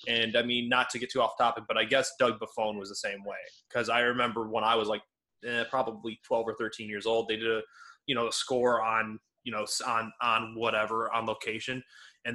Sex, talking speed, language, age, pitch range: male, 235 wpm, English, 20-39, 110-135 Hz